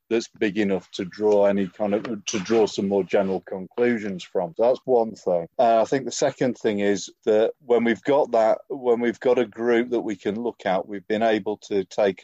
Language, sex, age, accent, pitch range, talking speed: English, male, 40-59, British, 95-115 Hz, 220 wpm